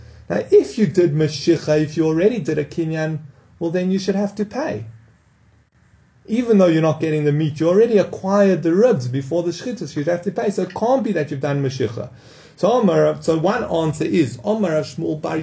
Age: 30-49